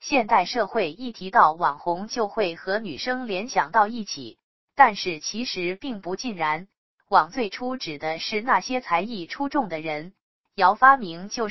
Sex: female